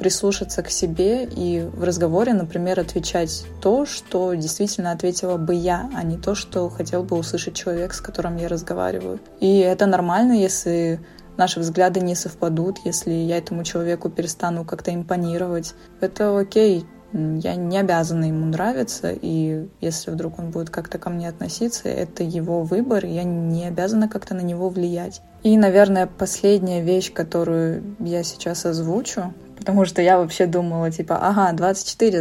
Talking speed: 155 wpm